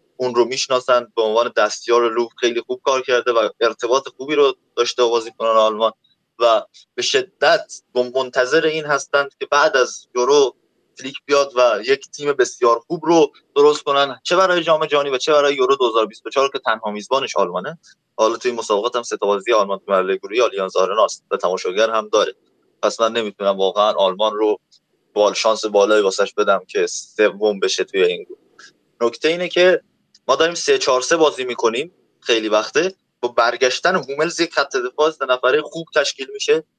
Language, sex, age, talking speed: Persian, male, 20-39, 170 wpm